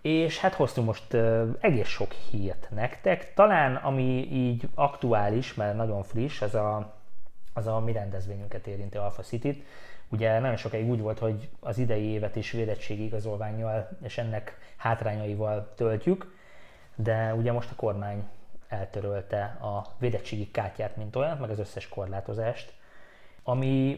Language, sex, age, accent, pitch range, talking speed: English, male, 20-39, Finnish, 105-120 Hz, 145 wpm